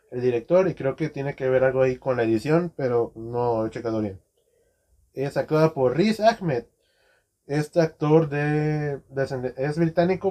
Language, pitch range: Spanish, 130-165 Hz